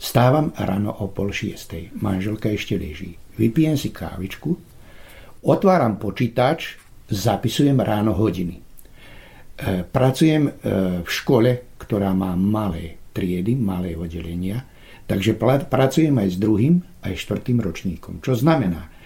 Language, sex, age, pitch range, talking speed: Slovak, male, 60-79, 95-130 Hz, 110 wpm